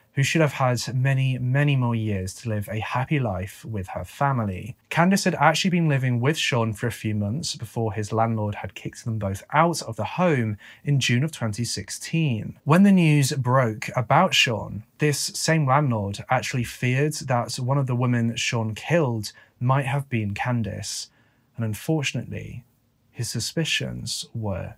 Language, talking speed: English, 165 wpm